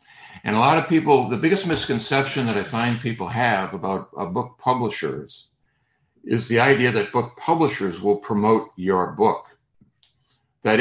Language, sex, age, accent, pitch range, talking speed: English, male, 60-79, American, 105-135 Hz, 155 wpm